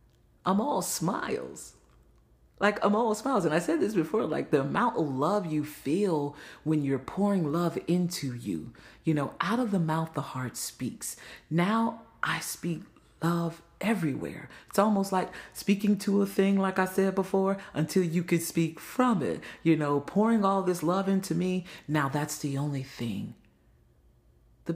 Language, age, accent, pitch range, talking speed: English, 40-59, American, 135-205 Hz, 170 wpm